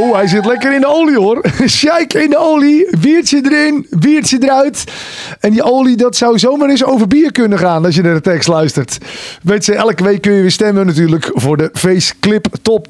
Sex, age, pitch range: male, 40-59, 190-270 Hz